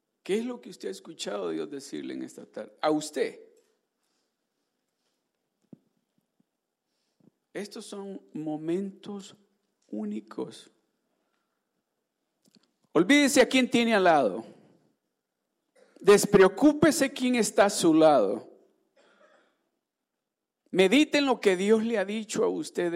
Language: Spanish